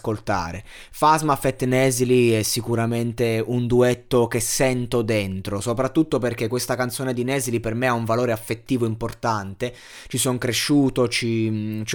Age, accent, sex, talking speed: 20-39, native, male, 140 wpm